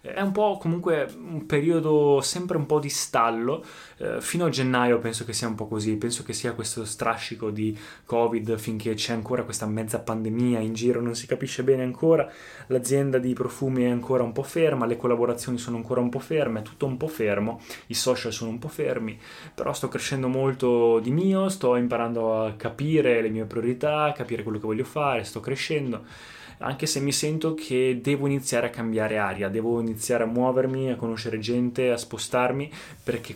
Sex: male